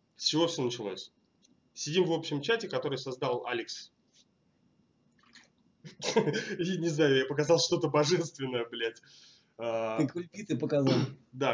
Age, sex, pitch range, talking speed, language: 20-39, male, 115-150 Hz, 115 wpm, Russian